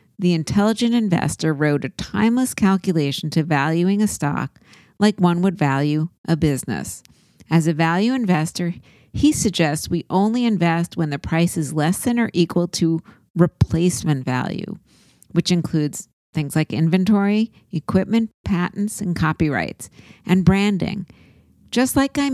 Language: English